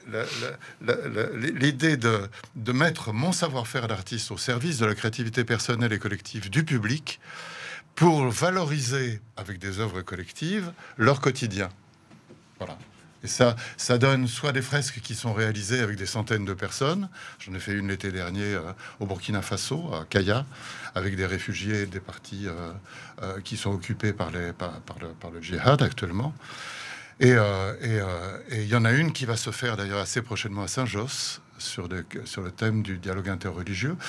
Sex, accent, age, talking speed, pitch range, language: male, French, 60-79, 180 wpm, 100-135 Hz, French